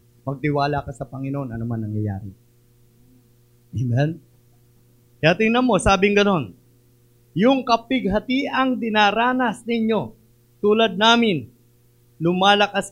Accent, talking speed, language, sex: native, 95 wpm, Filipino, male